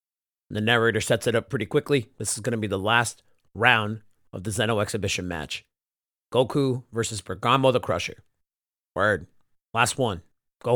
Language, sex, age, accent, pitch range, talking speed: English, male, 40-59, American, 105-130 Hz, 160 wpm